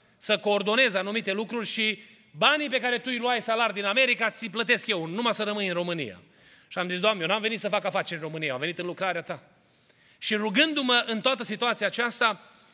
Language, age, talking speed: Romanian, 30-49, 210 wpm